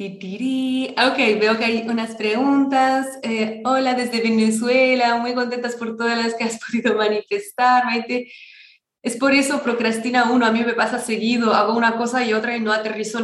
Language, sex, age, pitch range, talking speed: Spanish, female, 20-39, 185-230 Hz, 170 wpm